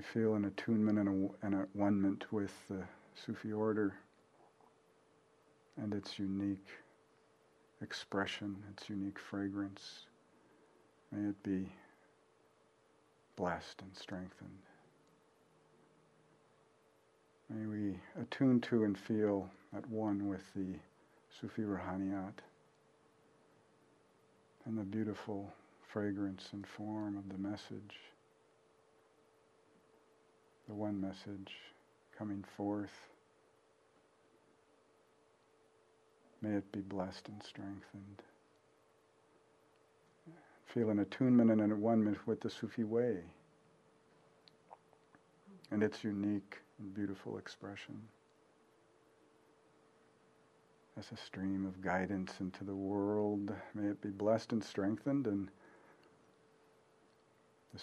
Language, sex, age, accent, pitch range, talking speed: English, male, 50-69, American, 100-110 Hz, 90 wpm